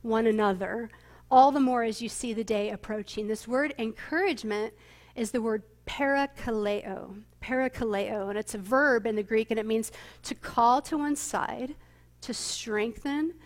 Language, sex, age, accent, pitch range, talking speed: English, female, 40-59, American, 225-260 Hz, 160 wpm